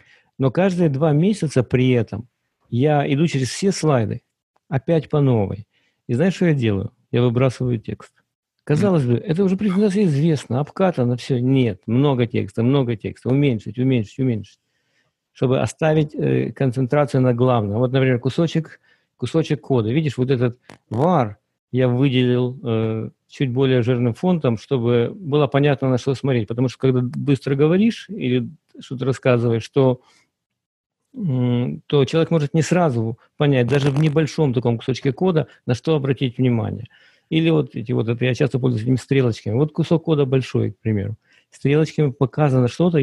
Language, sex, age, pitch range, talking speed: English, male, 50-69, 120-150 Hz, 150 wpm